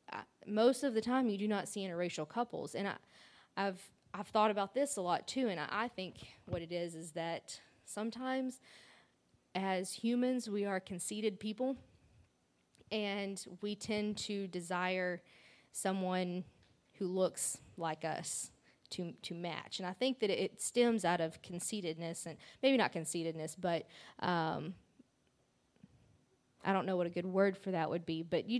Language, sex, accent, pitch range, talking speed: English, female, American, 170-210 Hz, 165 wpm